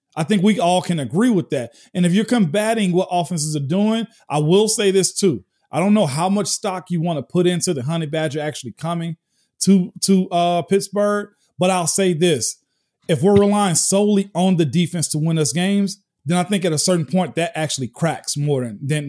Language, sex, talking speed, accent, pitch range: English, male, 215 wpm, American, 150-195 Hz